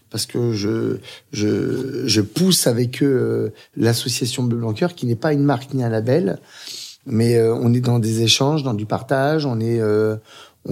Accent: French